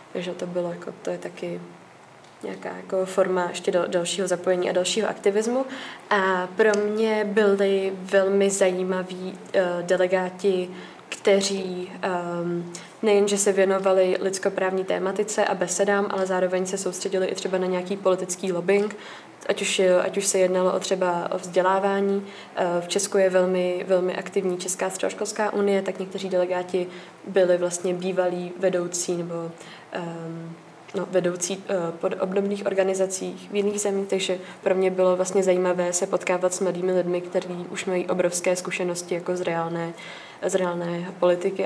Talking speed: 145 wpm